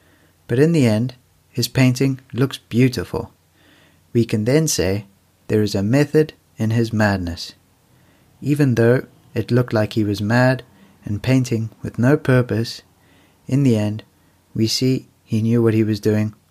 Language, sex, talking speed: English, male, 155 wpm